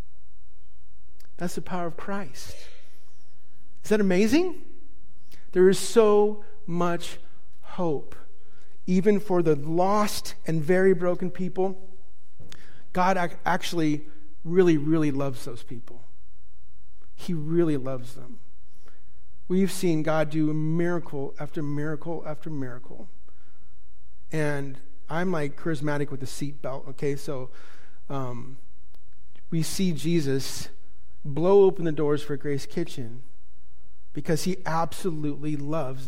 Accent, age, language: American, 50-69, English